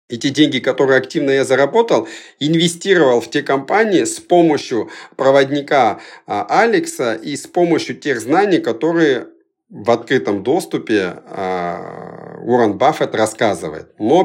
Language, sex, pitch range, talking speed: Russian, male, 120-165 Hz, 120 wpm